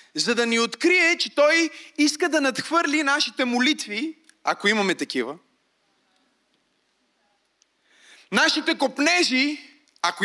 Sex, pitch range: male, 235-315 Hz